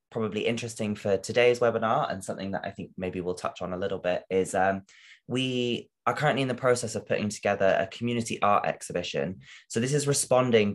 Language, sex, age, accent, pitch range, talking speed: English, male, 20-39, British, 95-120 Hz, 200 wpm